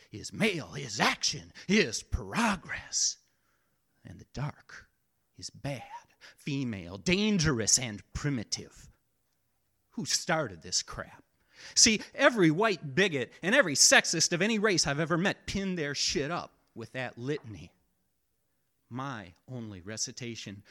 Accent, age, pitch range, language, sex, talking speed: American, 30-49, 120-175 Hz, English, male, 120 wpm